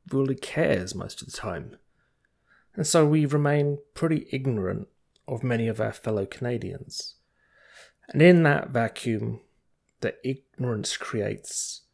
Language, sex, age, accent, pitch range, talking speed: English, male, 30-49, British, 105-135 Hz, 125 wpm